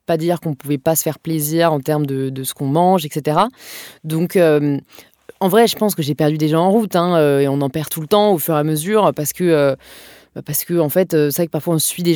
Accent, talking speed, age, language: French, 275 wpm, 20-39, French